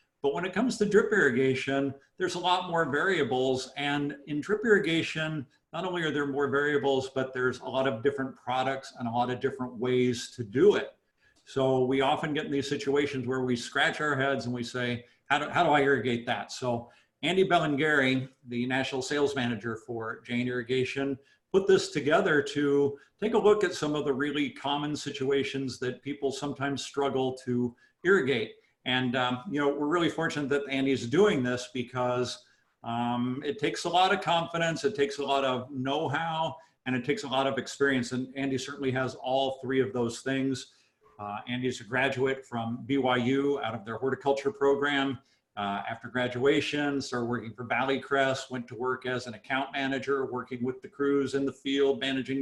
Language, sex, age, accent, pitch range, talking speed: English, male, 50-69, American, 125-145 Hz, 185 wpm